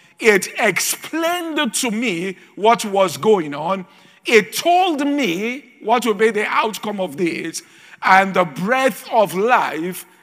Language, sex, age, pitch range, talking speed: English, male, 50-69, 185-240 Hz, 135 wpm